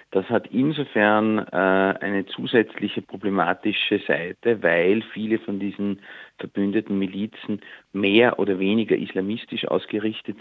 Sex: male